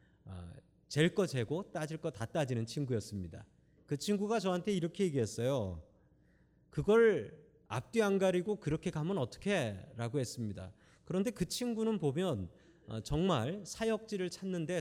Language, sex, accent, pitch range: Korean, male, native, 120-185 Hz